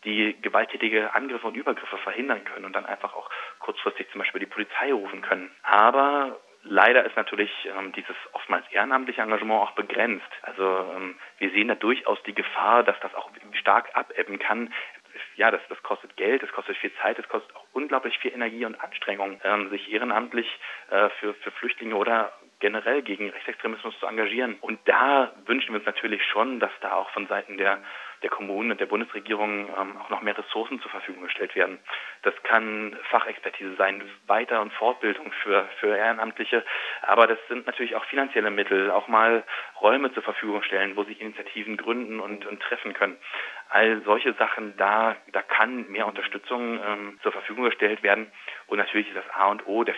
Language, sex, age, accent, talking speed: German, male, 30-49, German, 180 wpm